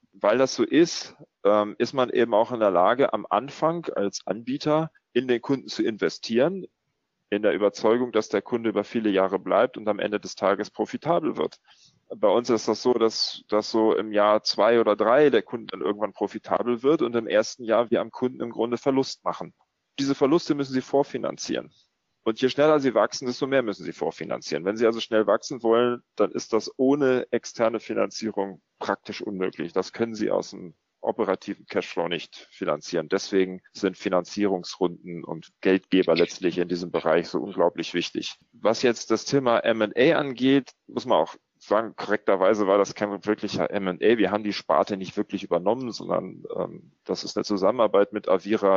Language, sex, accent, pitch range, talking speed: German, male, German, 100-125 Hz, 180 wpm